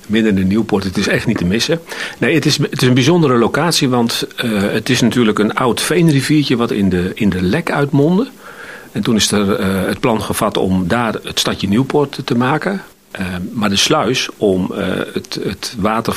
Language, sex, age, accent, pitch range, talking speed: Dutch, male, 40-59, Dutch, 95-130 Hz, 210 wpm